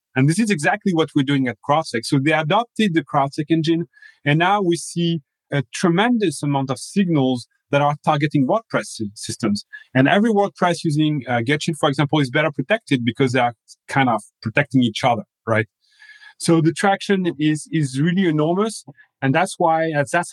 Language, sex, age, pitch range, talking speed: English, male, 30-49, 140-180 Hz, 180 wpm